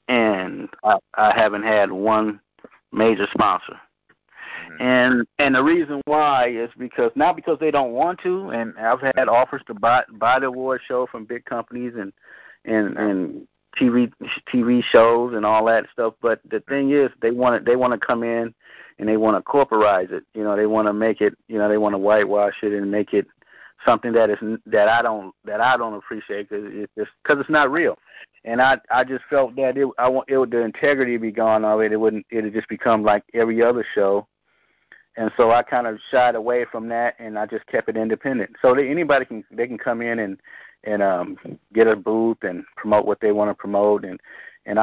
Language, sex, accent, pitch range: Japanese, male, American, 105-125 Hz